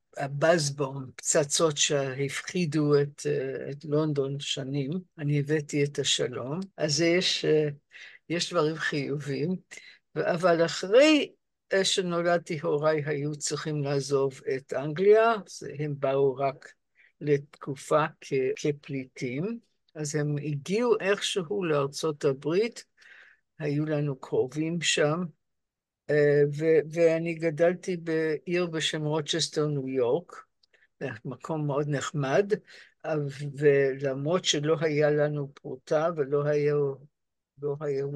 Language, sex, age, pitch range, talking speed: Hebrew, female, 60-79, 145-180 Hz, 90 wpm